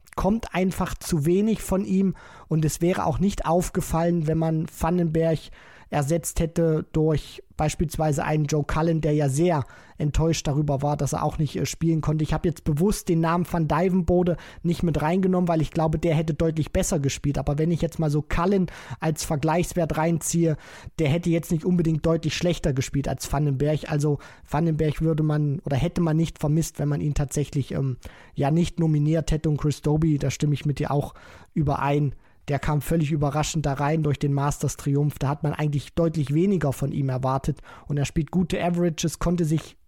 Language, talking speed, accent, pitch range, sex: German, 190 wpm, German, 145-170 Hz, male